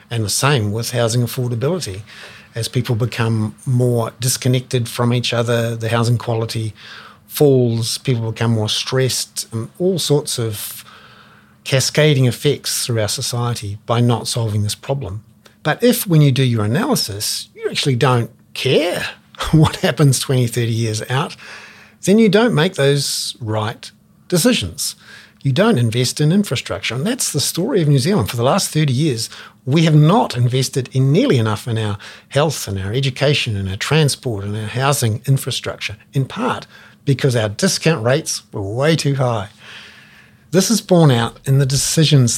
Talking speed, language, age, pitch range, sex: 160 wpm, English, 50-69, 115-145 Hz, male